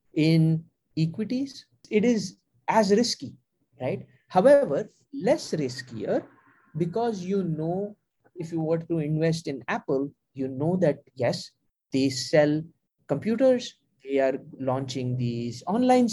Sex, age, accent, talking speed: male, 30-49, Indian, 120 wpm